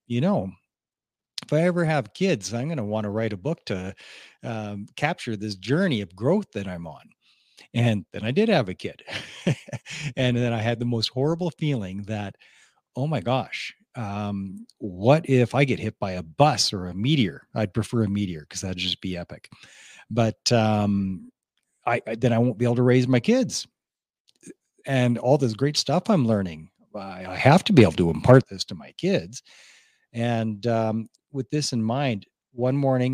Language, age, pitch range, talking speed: English, 40-59, 105-135 Hz, 190 wpm